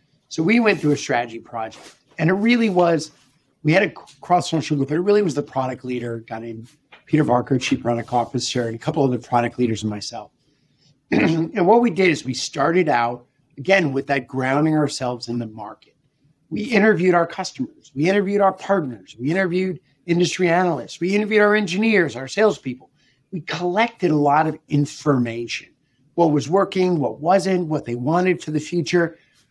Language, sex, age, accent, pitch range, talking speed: English, male, 50-69, American, 130-175 Hz, 185 wpm